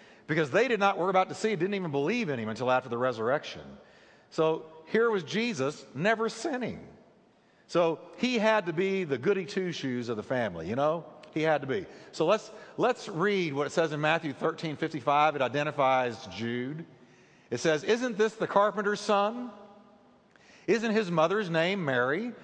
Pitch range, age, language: 140-205 Hz, 50-69, English